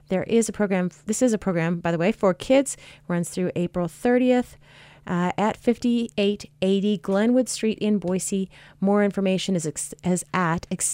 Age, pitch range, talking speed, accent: 30-49, 175-210 Hz, 160 wpm, American